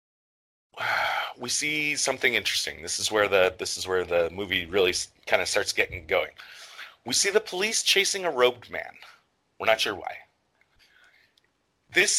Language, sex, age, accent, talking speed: English, male, 30-49, American, 160 wpm